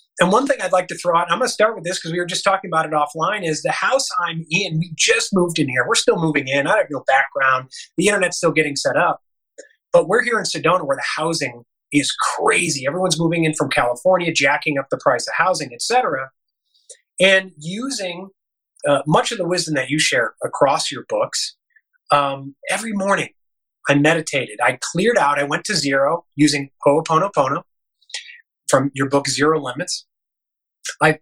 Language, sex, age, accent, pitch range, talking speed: English, male, 30-49, American, 150-225 Hz, 200 wpm